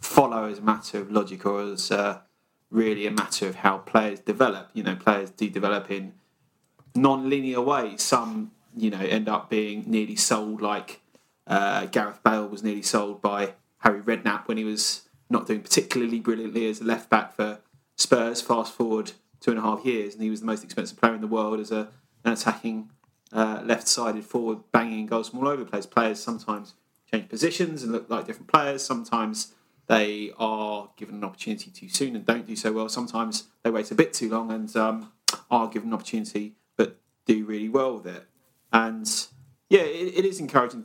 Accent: British